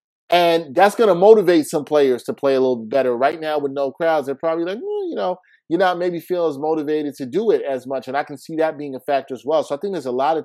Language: English